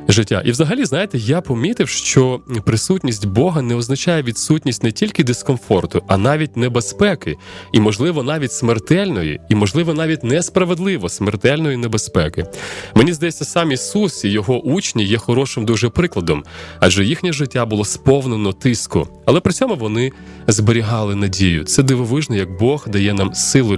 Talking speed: 145 wpm